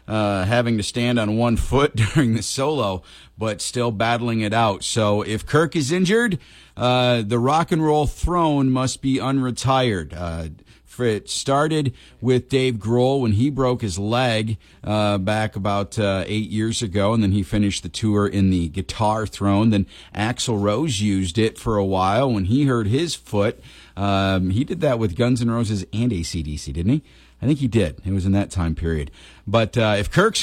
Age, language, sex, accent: 50-69, English, male, American